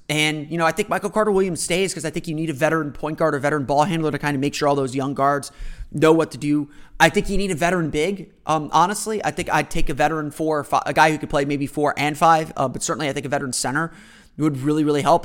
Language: English